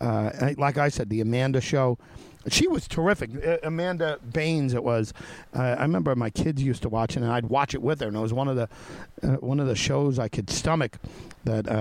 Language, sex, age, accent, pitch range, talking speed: English, male, 50-69, American, 120-155 Hz, 230 wpm